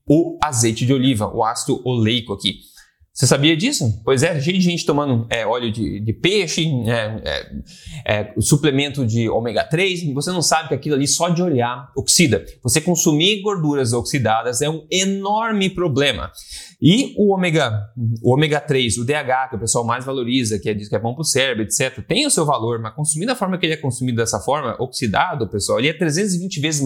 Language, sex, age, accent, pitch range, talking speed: Portuguese, male, 20-39, Brazilian, 115-165 Hz, 185 wpm